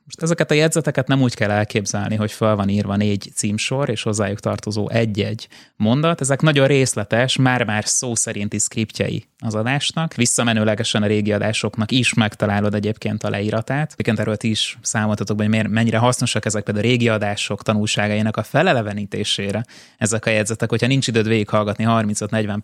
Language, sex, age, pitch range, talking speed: Hungarian, male, 20-39, 105-120 Hz, 160 wpm